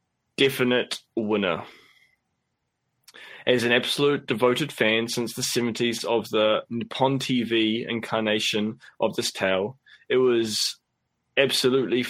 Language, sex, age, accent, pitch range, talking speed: English, male, 20-39, Australian, 110-125 Hz, 105 wpm